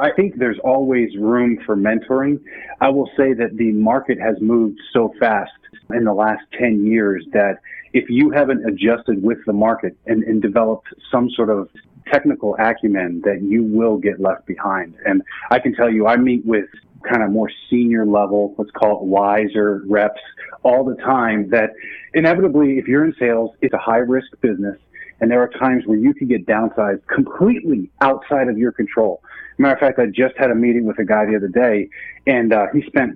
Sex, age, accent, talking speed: male, 30-49, American, 195 wpm